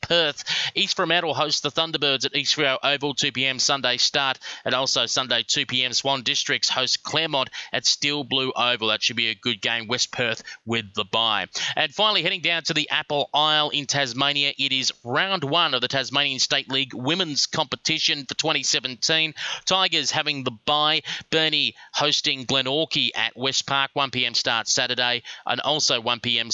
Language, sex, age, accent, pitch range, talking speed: English, male, 30-49, Australian, 120-150 Hz, 170 wpm